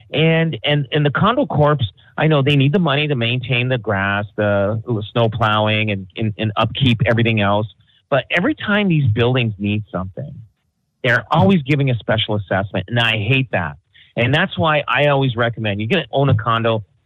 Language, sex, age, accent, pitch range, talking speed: English, male, 40-59, American, 115-155 Hz, 190 wpm